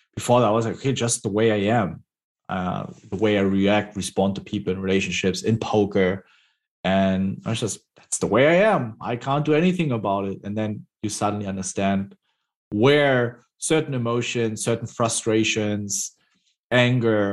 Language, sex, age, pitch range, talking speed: English, male, 30-49, 100-115 Hz, 170 wpm